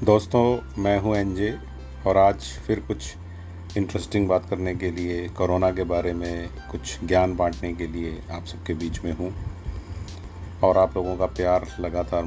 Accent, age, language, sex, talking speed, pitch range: native, 40-59, Hindi, male, 160 wpm, 85-105 Hz